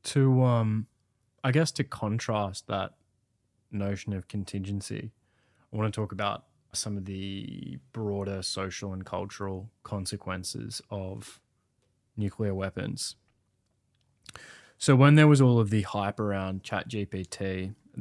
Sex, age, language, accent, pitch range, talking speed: male, 20-39, English, Australian, 100-125 Hz, 125 wpm